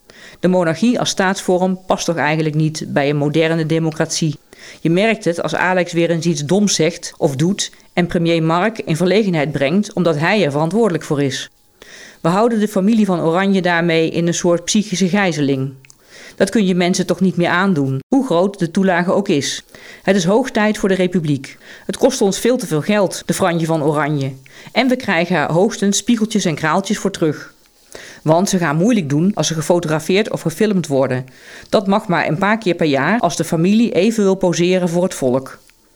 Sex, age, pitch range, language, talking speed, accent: female, 40-59, 155-195 Hz, Dutch, 195 wpm, Dutch